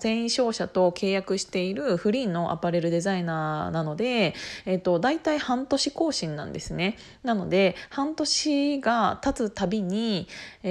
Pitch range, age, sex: 175-225 Hz, 20-39, female